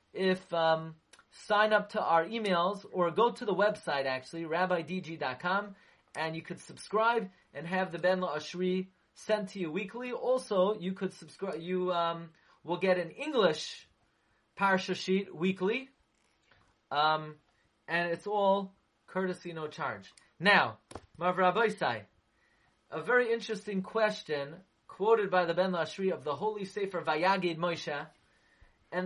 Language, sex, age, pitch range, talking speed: English, male, 30-49, 165-200 Hz, 140 wpm